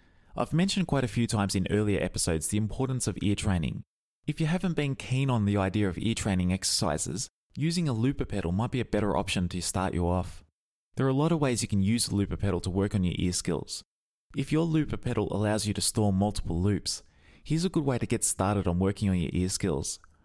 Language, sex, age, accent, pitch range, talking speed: English, male, 20-39, Australian, 95-130 Hz, 235 wpm